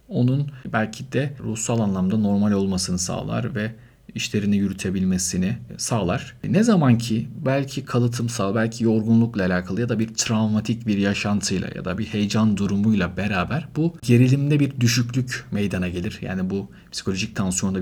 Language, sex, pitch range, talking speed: Turkish, male, 105-135 Hz, 140 wpm